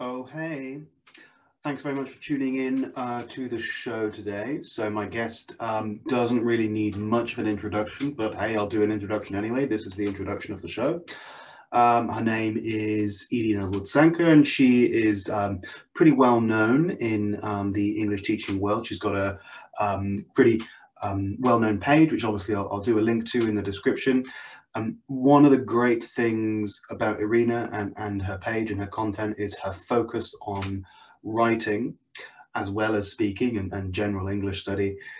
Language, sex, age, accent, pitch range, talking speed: English, male, 20-39, British, 100-120 Hz, 180 wpm